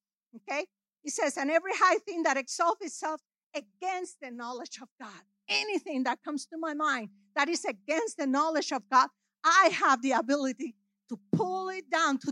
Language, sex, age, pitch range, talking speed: English, female, 50-69, 220-310 Hz, 180 wpm